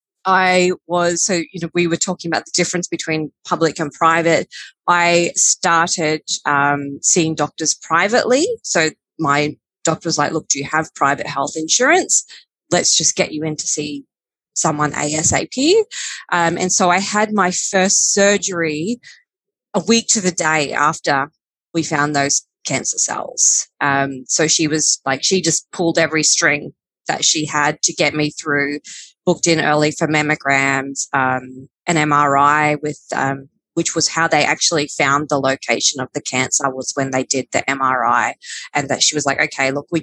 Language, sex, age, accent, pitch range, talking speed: English, female, 20-39, Australian, 145-180 Hz, 170 wpm